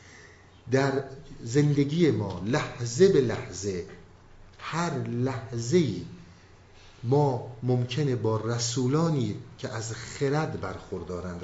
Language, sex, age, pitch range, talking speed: Persian, male, 50-69, 105-150 Hz, 85 wpm